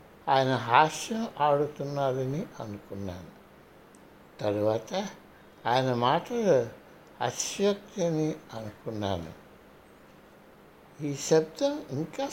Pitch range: 125-175 Hz